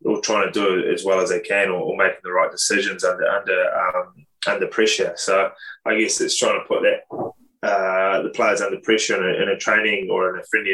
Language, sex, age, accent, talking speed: English, male, 10-29, Australian, 240 wpm